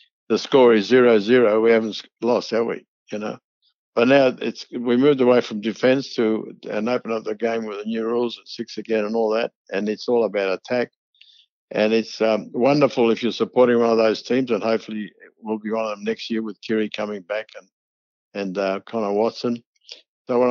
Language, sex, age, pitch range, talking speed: English, male, 60-79, 105-120 Hz, 210 wpm